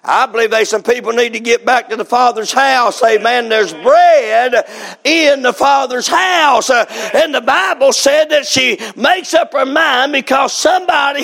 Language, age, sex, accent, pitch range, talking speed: English, 50-69, male, American, 240-285 Hz, 170 wpm